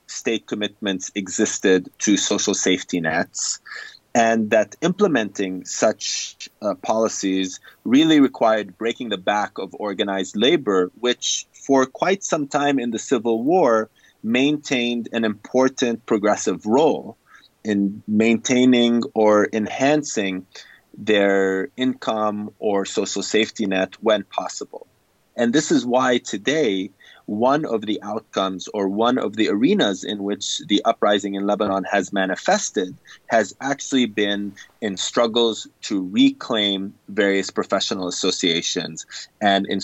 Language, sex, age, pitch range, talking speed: English, male, 30-49, 100-120 Hz, 120 wpm